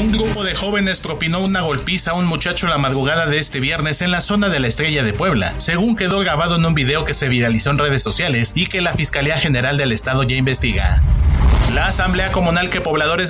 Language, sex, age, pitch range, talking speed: Spanish, male, 40-59, 125-170 Hz, 220 wpm